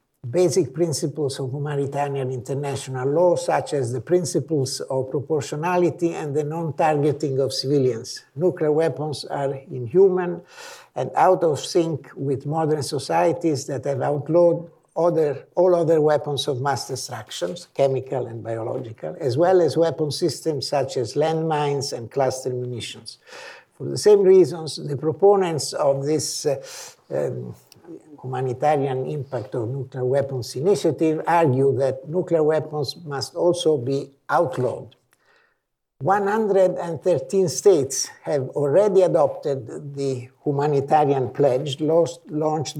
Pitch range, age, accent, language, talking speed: 135-170 Hz, 60-79, Italian, English, 115 wpm